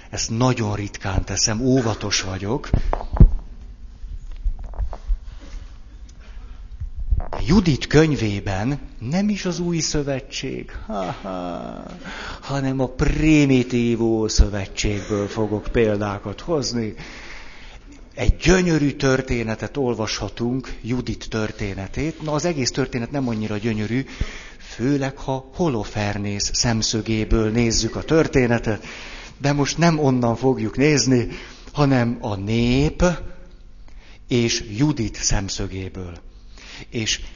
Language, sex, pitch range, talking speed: Hungarian, male, 100-135 Hz, 85 wpm